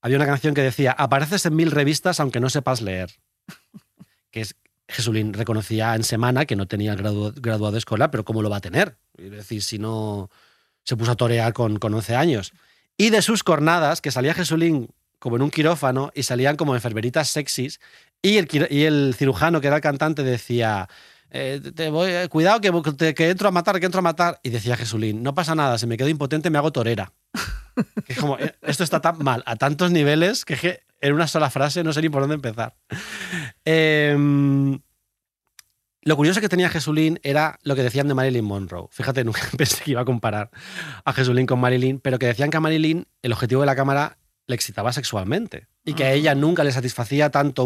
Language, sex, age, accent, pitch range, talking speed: Spanish, male, 30-49, Spanish, 115-155 Hz, 205 wpm